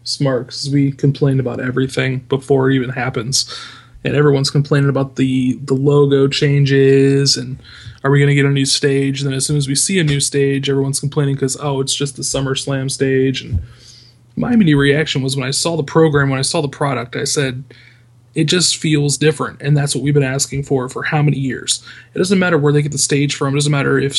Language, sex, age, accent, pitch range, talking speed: English, male, 20-39, American, 130-145 Hz, 225 wpm